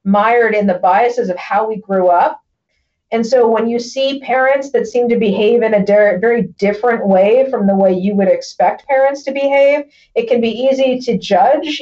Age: 40-59